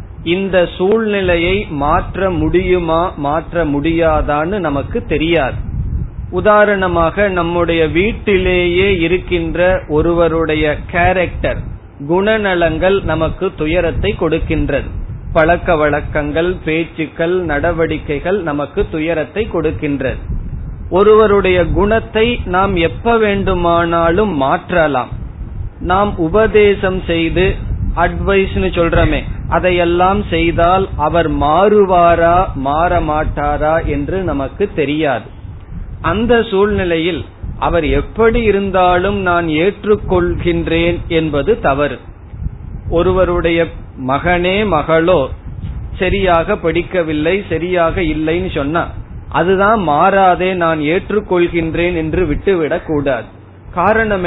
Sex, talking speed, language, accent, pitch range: male, 75 wpm, Tamil, native, 155-190 Hz